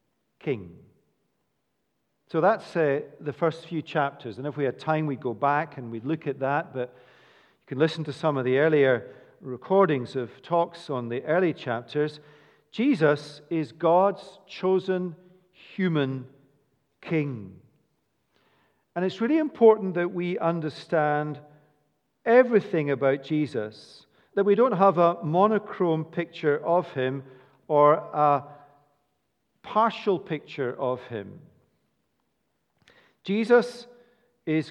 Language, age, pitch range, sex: English, 50-69, 145-195 Hz, male